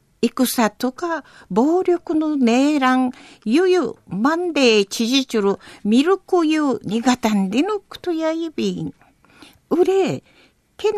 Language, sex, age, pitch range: Japanese, female, 50-69, 235-310 Hz